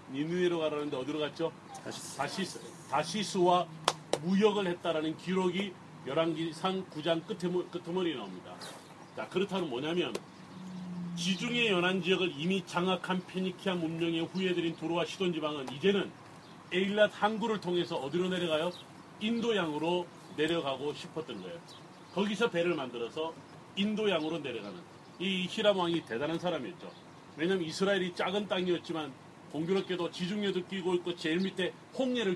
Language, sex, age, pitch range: Korean, male, 40-59, 165-190 Hz